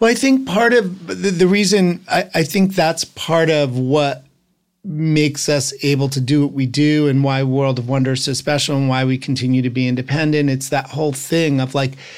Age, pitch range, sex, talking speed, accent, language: 40-59, 130-160 Hz, male, 215 wpm, American, English